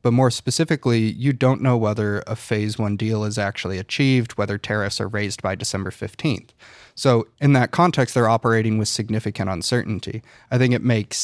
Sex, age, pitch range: male, 30-49, 105-125 Hz